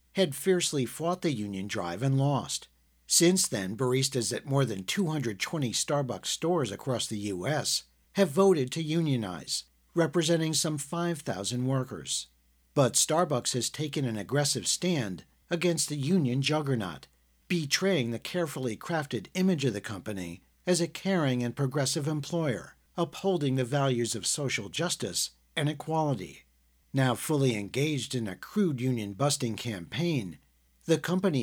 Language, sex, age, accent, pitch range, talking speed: English, male, 50-69, American, 110-165 Hz, 135 wpm